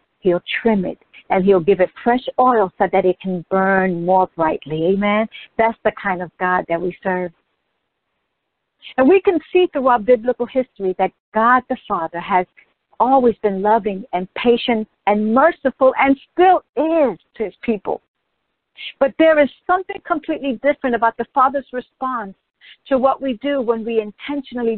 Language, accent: English, American